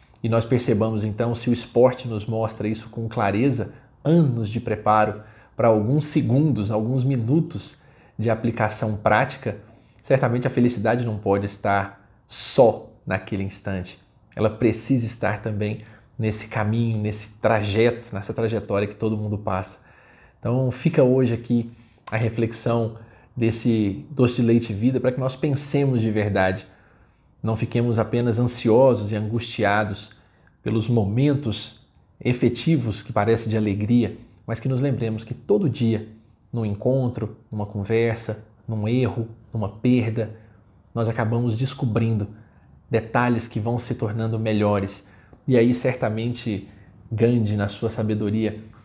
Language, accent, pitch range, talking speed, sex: Portuguese, Brazilian, 105-120 Hz, 135 wpm, male